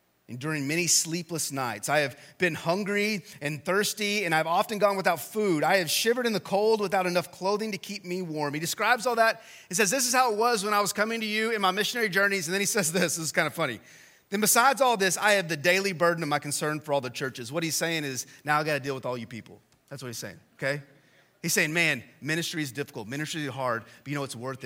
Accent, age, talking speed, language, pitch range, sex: American, 30-49, 265 wpm, English, 120-190 Hz, male